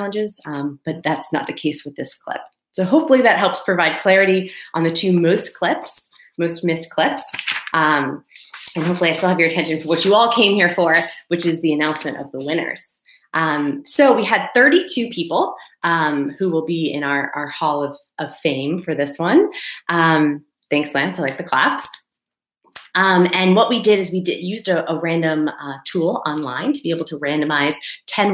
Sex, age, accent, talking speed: female, 30-49, American, 200 wpm